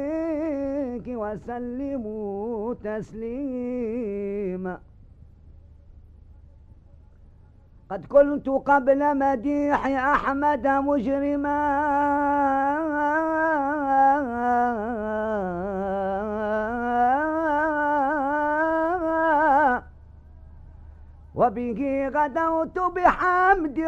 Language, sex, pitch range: Arabic, female, 195-280 Hz